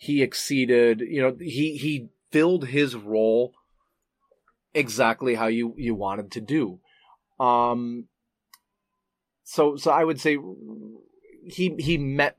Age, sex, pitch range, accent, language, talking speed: 30-49, male, 115-140 Hz, American, English, 120 wpm